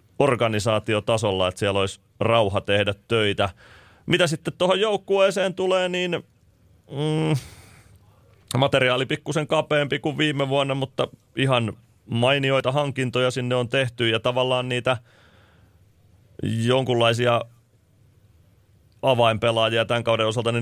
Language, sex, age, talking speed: Finnish, male, 30-49, 100 wpm